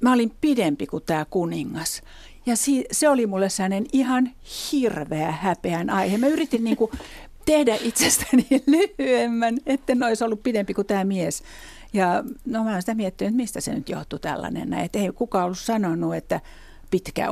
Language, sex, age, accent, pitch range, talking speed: Finnish, female, 60-79, native, 155-220 Hz, 165 wpm